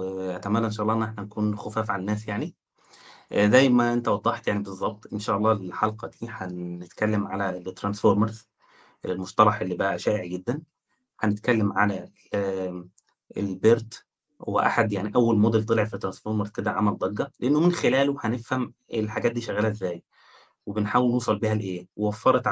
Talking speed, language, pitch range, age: 150 wpm, Arabic, 105-120 Hz, 20-39